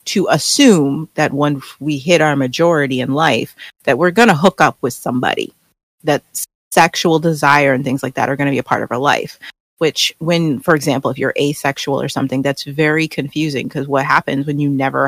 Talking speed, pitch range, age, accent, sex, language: 205 wpm, 145-185 Hz, 30-49, American, female, English